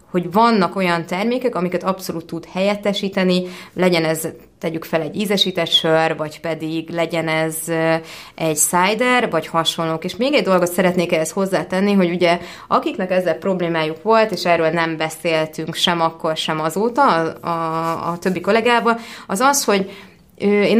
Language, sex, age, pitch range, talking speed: Hungarian, female, 20-39, 165-210 Hz, 150 wpm